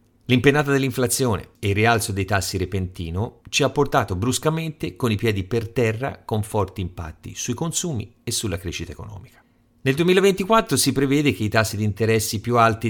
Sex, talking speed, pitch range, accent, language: male, 170 wpm, 95-135 Hz, native, Italian